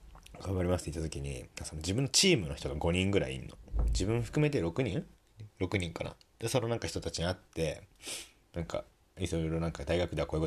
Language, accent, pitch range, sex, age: Japanese, native, 80-110 Hz, male, 30-49